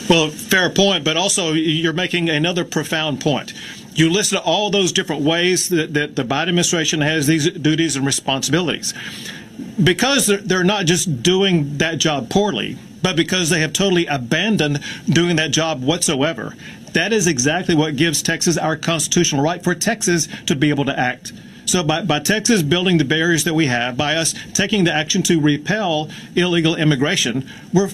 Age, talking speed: 40-59, 175 wpm